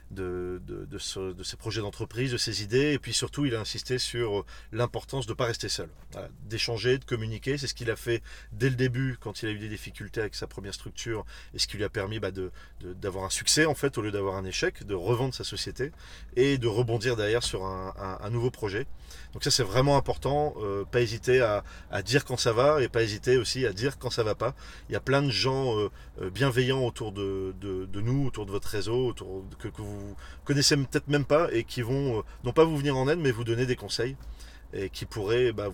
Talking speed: 250 wpm